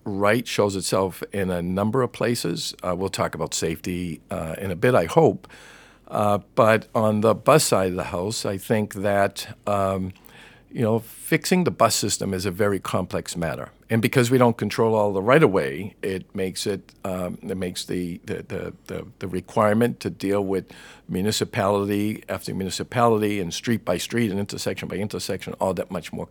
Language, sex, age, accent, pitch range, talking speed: English, male, 50-69, American, 90-110 Hz, 185 wpm